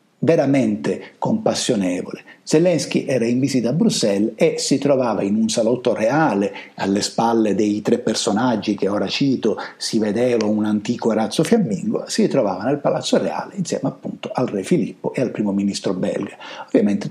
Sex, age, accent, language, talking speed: male, 50-69, native, Italian, 160 wpm